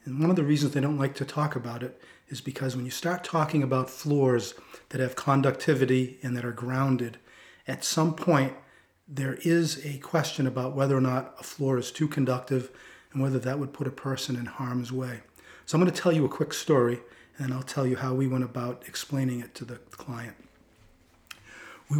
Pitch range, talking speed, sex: 125-150 Hz, 205 wpm, male